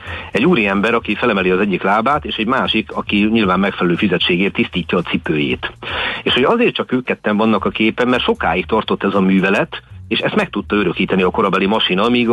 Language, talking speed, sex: Hungarian, 205 wpm, male